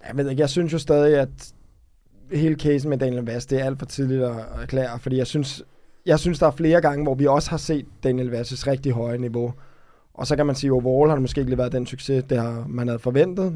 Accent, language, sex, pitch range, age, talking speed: native, Danish, male, 125-140 Hz, 20-39, 260 wpm